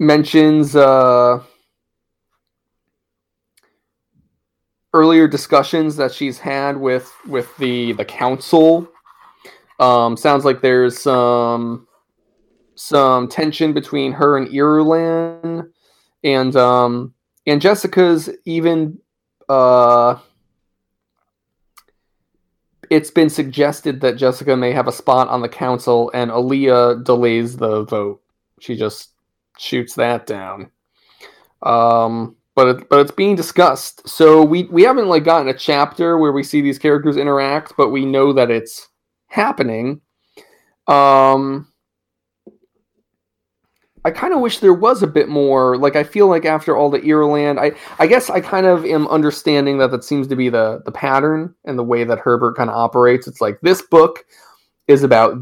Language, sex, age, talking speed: English, male, 20-39, 135 wpm